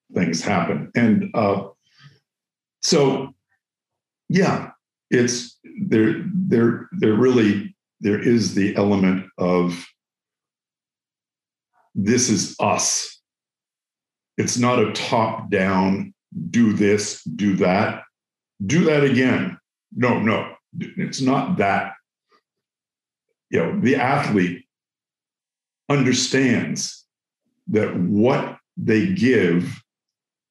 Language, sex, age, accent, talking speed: English, male, 50-69, American, 90 wpm